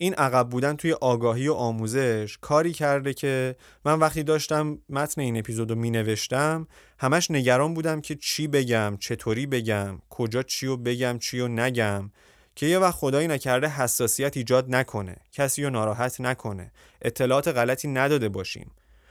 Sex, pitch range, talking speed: male, 110-150 Hz, 140 wpm